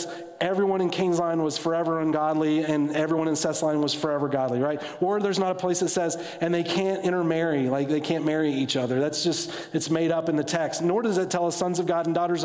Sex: male